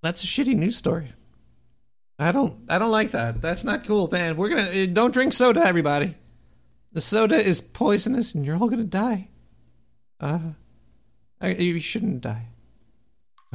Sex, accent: male, American